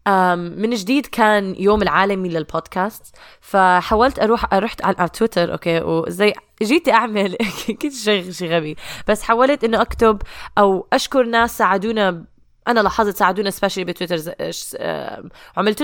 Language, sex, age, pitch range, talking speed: Arabic, female, 20-39, 195-250 Hz, 115 wpm